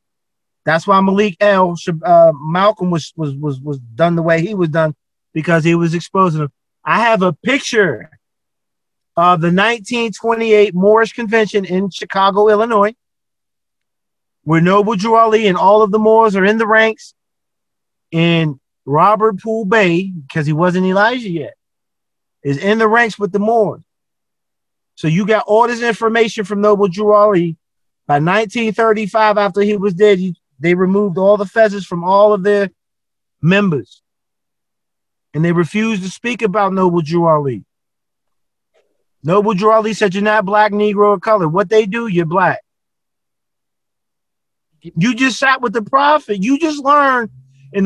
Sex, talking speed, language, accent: male, 155 wpm, English, American